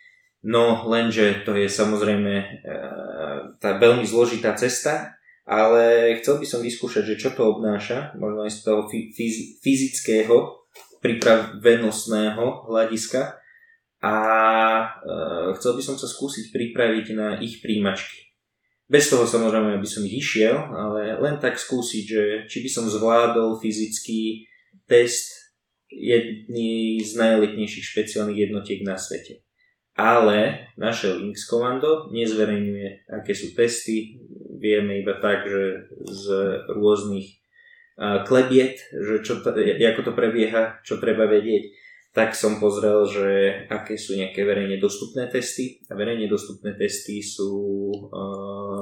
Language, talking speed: Slovak, 125 wpm